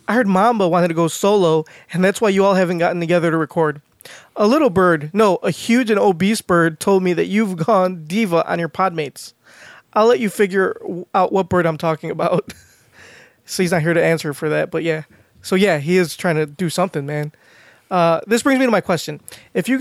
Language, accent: English, American